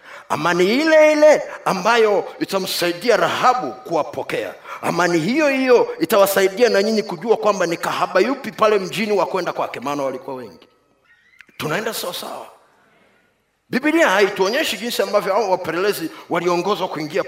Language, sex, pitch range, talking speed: Swahili, male, 195-255 Hz, 135 wpm